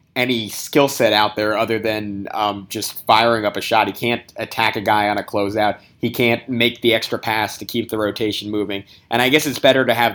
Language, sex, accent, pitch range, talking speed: English, male, American, 105-115 Hz, 230 wpm